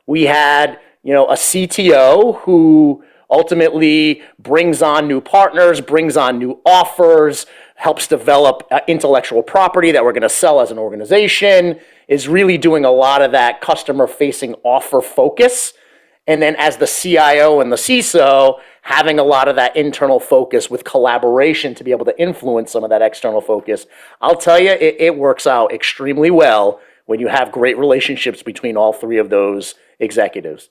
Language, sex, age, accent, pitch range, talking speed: English, male, 30-49, American, 130-170 Hz, 170 wpm